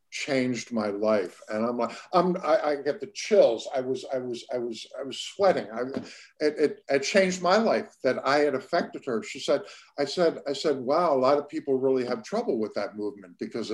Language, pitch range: English, 115-155 Hz